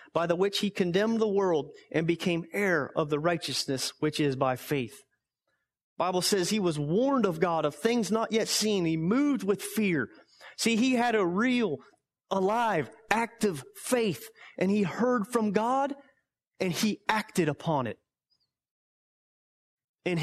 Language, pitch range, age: English, 155-205 Hz, 30-49